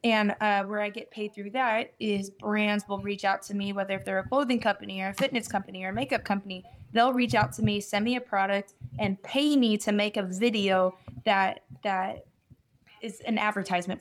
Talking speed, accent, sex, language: 215 wpm, American, female, English